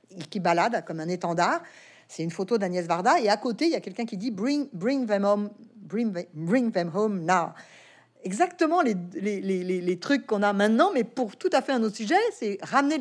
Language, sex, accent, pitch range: French, female, French, 180-235 Hz